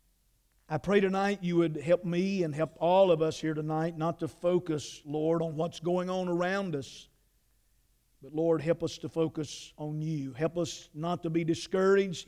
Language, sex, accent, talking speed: English, male, American, 185 wpm